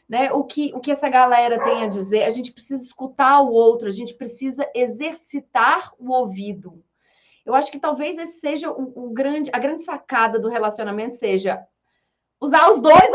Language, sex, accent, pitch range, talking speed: Portuguese, female, Brazilian, 215-290 Hz, 185 wpm